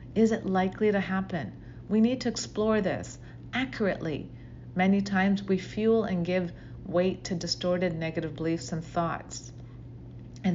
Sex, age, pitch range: female, 40-59, 160-195 Hz